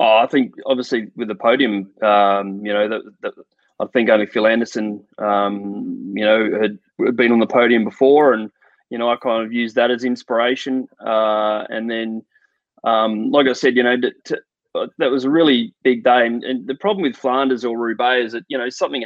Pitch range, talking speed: 110-130 Hz, 210 wpm